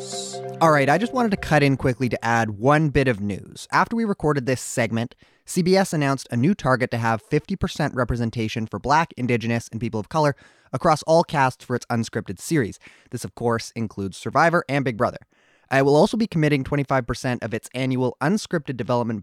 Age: 20-39